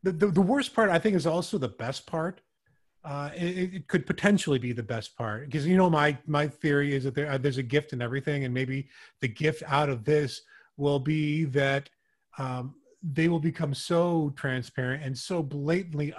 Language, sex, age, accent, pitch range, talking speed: English, male, 30-49, American, 140-165 Hz, 205 wpm